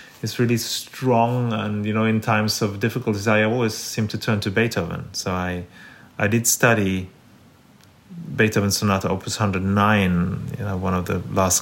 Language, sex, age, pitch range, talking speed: English, male, 30-49, 95-120 Hz, 165 wpm